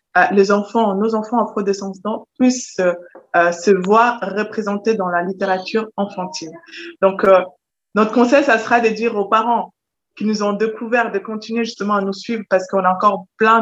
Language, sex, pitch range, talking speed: French, female, 195-230 Hz, 175 wpm